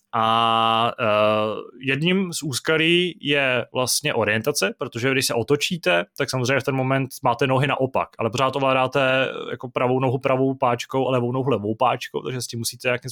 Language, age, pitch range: Czech, 20-39, 115-135 Hz